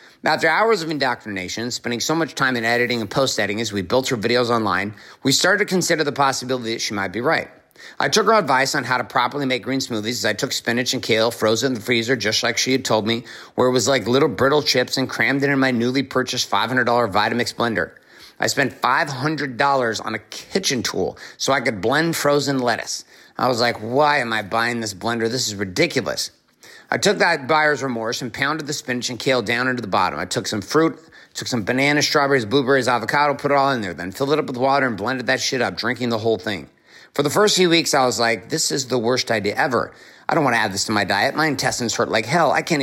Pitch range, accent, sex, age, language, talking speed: 115-140 Hz, American, male, 50-69, English, 245 wpm